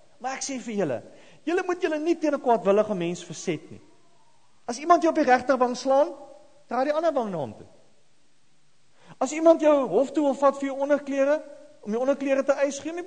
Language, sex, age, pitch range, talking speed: English, male, 40-59, 225-325 Hz, 205 wpm